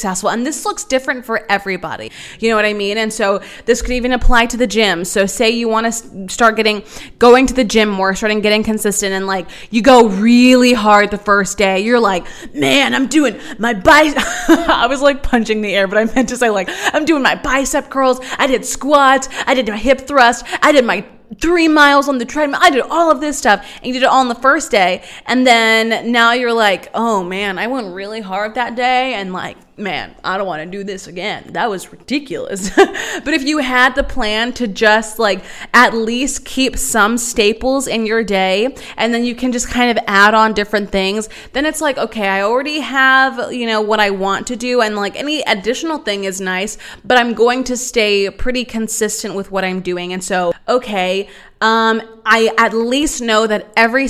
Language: English